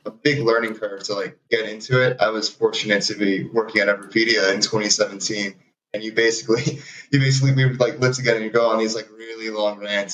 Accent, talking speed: American, 220 wpm